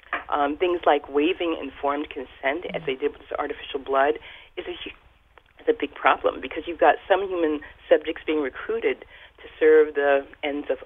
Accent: American